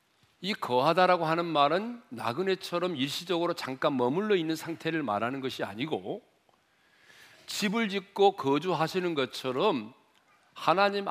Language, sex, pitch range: Korean, male, 150-210 Hz